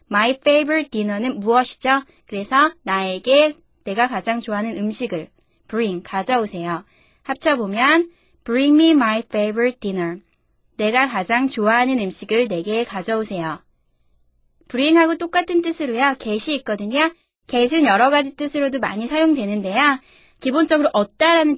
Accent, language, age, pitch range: native, Korean, 20-39, 210-295 Hz